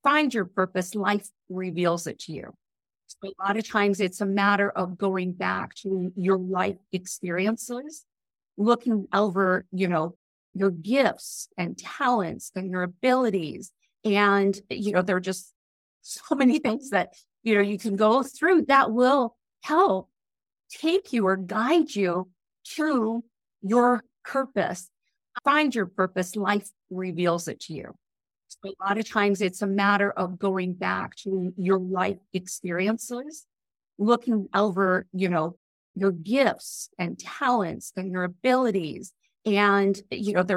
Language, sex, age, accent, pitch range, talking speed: English, female, 50-69, American, 190-240 Hz, 145 wpm